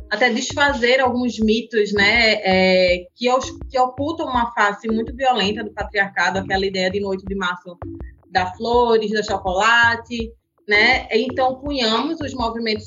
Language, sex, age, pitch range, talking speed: Portuguese, female, 20-39, 195-230 Hz, 140 wpm